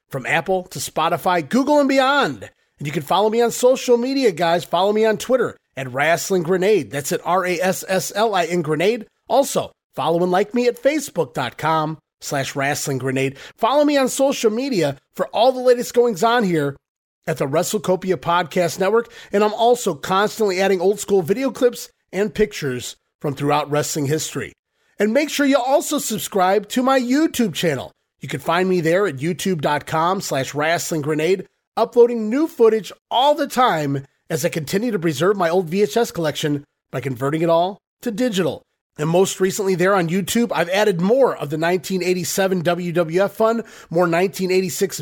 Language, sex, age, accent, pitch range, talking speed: English, male, 30-49, American, 165-220 Hz, 165 wpm